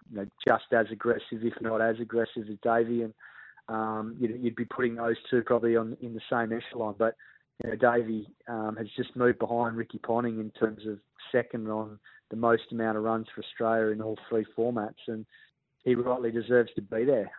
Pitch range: 110-120 Hz